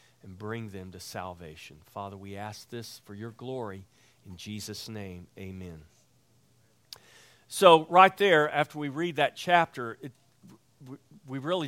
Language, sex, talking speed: English, male, 135 wpm